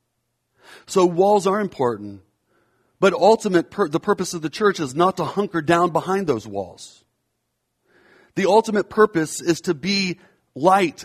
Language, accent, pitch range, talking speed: English, American, 125-165 Hz, 145 wpm